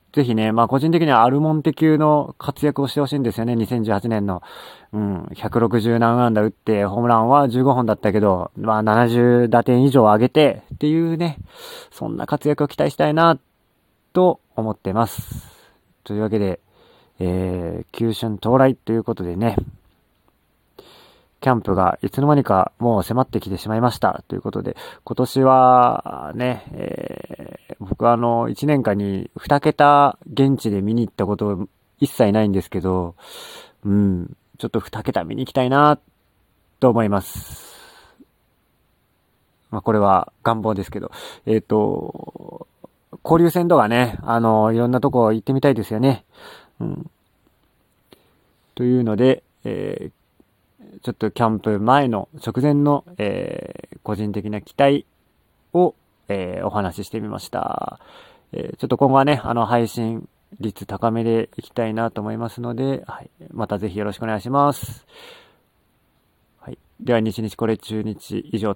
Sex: male